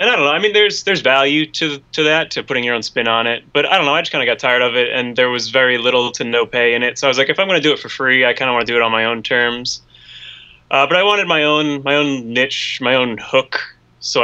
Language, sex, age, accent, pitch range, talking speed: English, male, 20-39, American, 115-145 Hz, 325 wpm